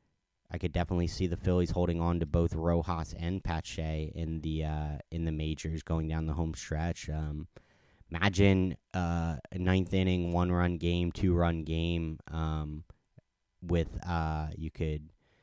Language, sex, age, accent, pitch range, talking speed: English, male, 30-49, American, 80-95 Hz, 160 wpm